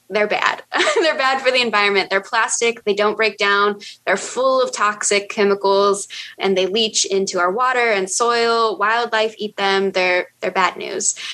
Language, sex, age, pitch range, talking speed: English, female, 10-29, 195-235 Hz, 170 wpm